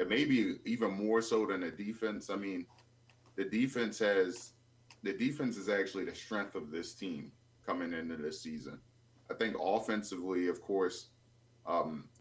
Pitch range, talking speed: 95-120 Hz, 150 wpm